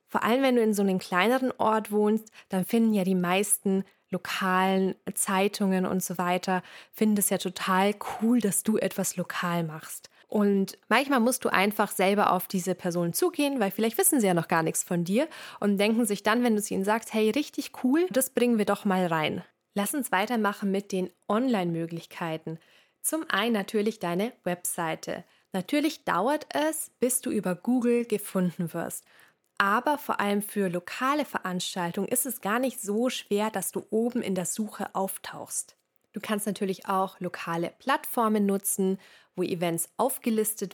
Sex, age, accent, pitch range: female, 20-39, German, 185-225 Hz